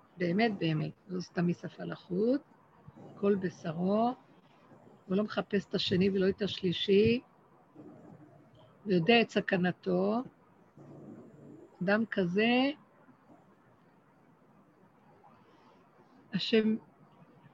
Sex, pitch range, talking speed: female, 185-220 Hz, 80 wpm